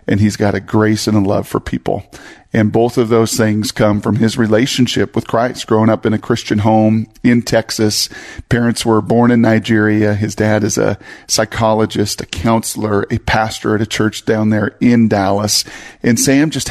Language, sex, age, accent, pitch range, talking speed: English, male, 40-59, American, 105-120 Hz, 190 wpm